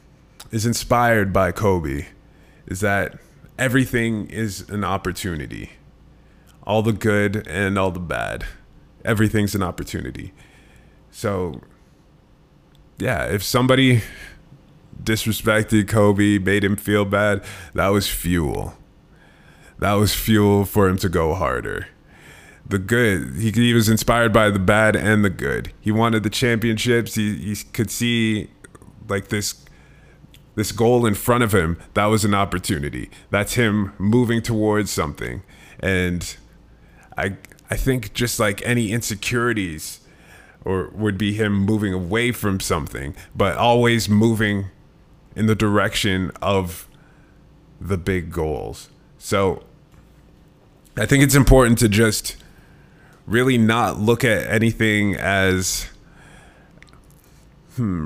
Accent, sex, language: American, male, English